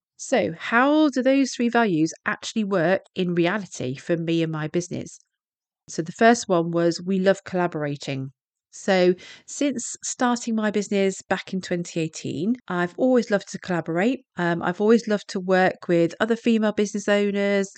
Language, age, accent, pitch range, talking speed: English, 40-59, British, 180-220 Hz, 160 wpm